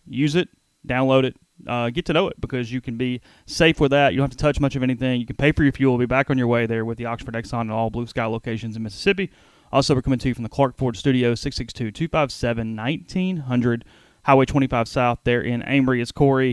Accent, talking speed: American, 250 wpm